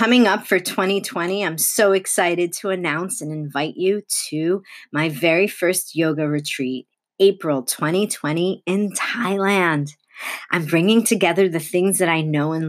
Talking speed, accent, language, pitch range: 145 wpm, American, English, 150-180 Hz